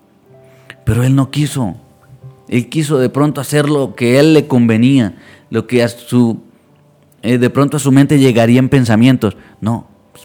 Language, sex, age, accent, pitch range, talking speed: Spanish, male, 30-49, Mexican, 105-130 Hz, 175 wpm